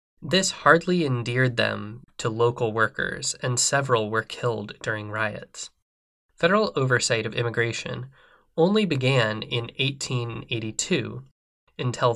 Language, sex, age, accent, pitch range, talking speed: English, male, 20-39, American, 115-145 Hz, 110 wpm